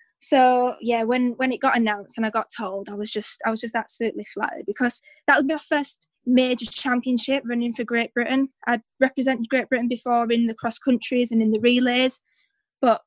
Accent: British